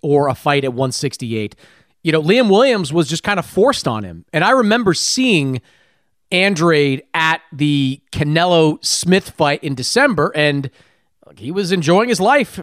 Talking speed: 155 wpm